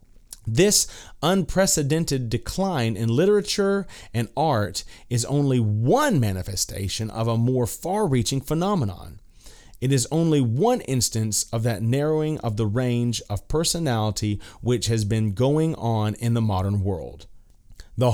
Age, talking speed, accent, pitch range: 30-49, 130 wpm, American, 105-150 Hz